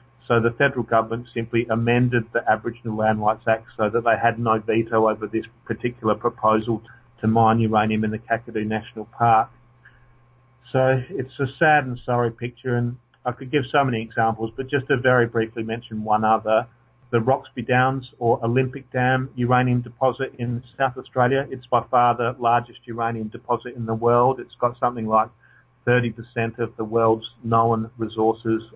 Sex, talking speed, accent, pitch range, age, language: male, 170 wpm, Australian, 115-125 Hz, 40-59, English